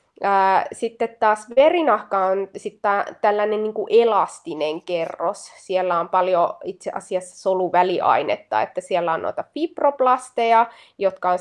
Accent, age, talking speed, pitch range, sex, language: native, 20-39, 120 wpm, 180-230 Hz, female, Finnish